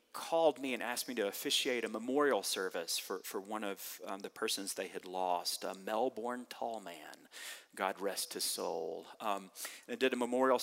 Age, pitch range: 40-59, 105-145 Hz